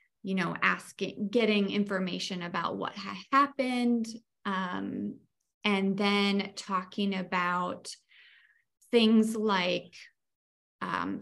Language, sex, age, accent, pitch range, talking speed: English, female, 30-49, American, 180-210 Hz, 85 wpm